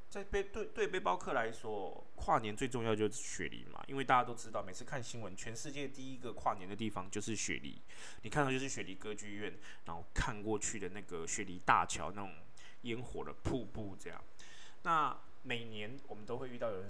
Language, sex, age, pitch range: Chinese, male, 20-39, 105-145 Hz